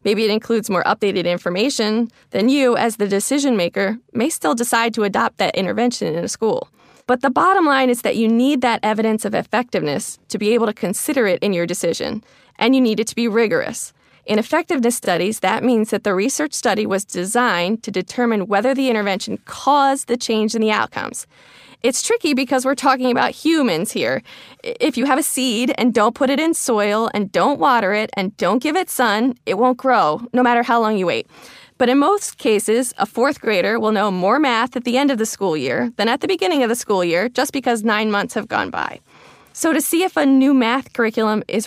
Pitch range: 205-260 Hz